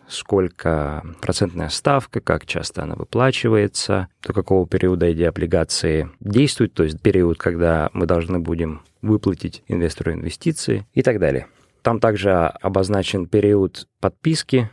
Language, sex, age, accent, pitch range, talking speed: Russian, male, 20-39, native, 85-110 Hz, 125 wpm